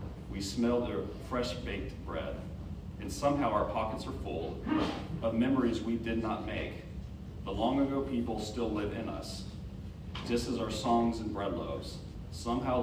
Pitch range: 90-115 Hz